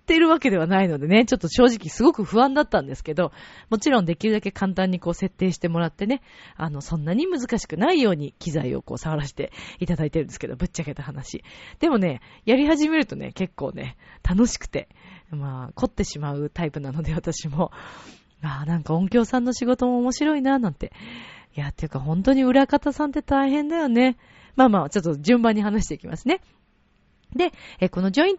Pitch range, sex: 155-255 Hz, female